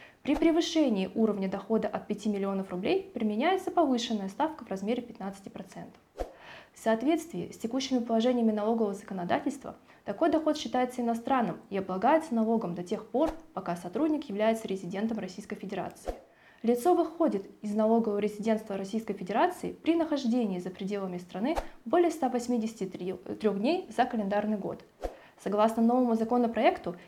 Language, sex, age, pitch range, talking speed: Russian, female, 20-39, 210-275 Hz, 130 wpm